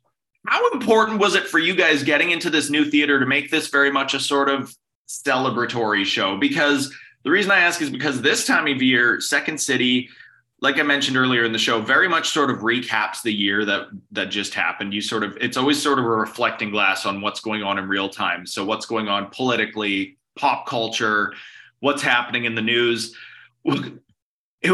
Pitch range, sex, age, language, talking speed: 115-145 Hz, male, 20-39, English, 200 wpm